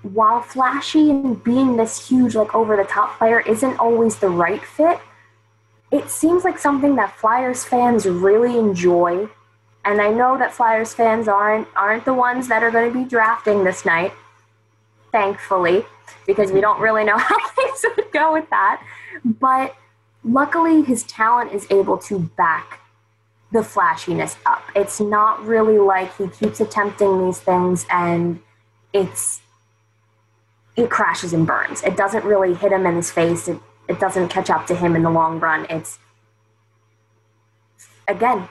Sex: female